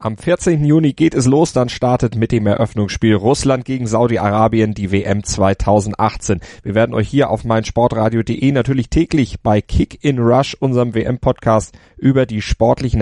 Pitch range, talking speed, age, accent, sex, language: 105-125 Hz, 160 wpm, 30-49, German, male, German